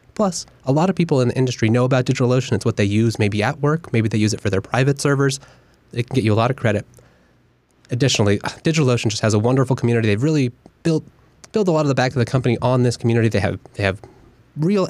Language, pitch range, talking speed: English, 115-145 Hz, 245 wpm